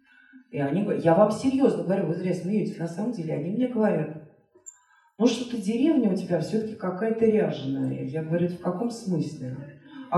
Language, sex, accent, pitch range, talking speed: Russian, female, native, 175-250 Hz, 175 wpm